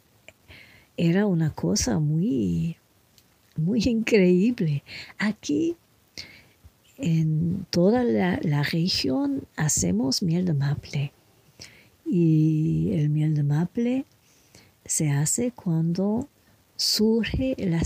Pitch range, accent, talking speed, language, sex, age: 140-190 Hz, American, 85 wpm, English, female, 50-69